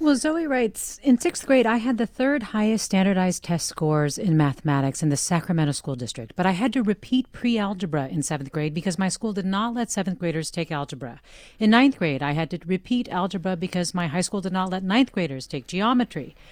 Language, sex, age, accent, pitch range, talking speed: English, female, 40-59, American, 155-205 Hz, 215 wpm